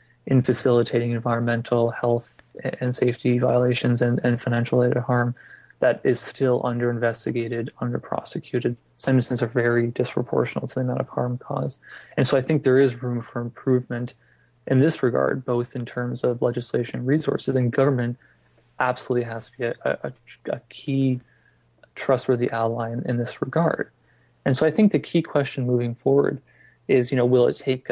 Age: 20-39